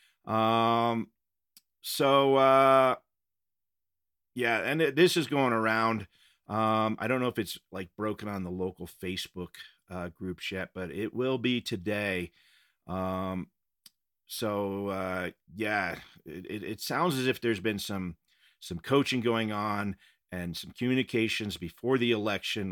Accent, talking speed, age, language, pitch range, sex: American, 135 wpm, 40-59, English, 90-115 Hz, male